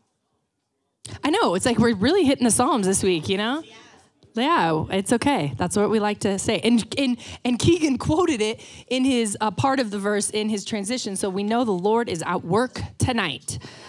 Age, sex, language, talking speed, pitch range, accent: 20-39, female, English, 205 wpm, 185-250 Hz, American